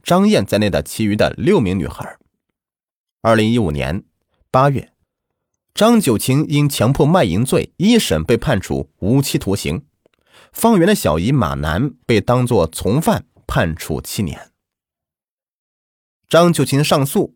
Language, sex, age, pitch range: Chinese, male, 30-49, 95-140 Hz